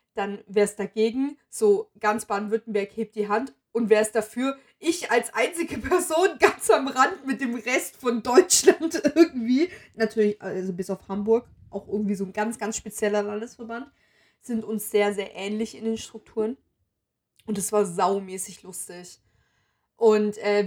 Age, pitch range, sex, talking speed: 20-39, 205-235 Hz, female, 160 wpm